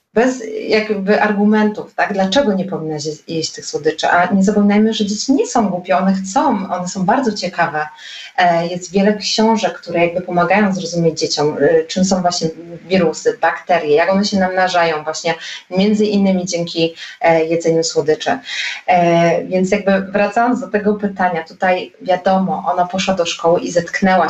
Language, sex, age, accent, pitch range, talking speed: Polish, female, 20-39, native, 170-200 Hz, 150 wpm